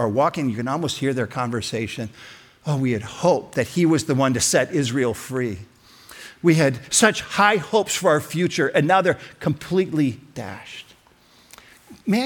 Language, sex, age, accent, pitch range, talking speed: English, male, 50-69, American, 125-195 Hz, 170 wpm